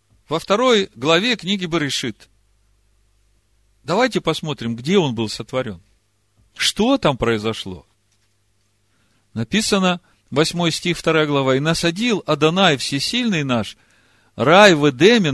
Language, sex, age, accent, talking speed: Russian, male, 50-69, native, 115 wpm